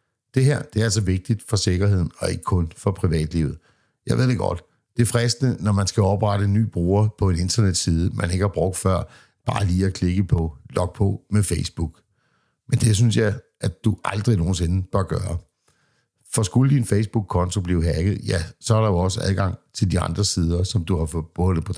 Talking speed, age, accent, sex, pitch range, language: 210 wpm, 60-79, native, male, 90-110 Hz, Danish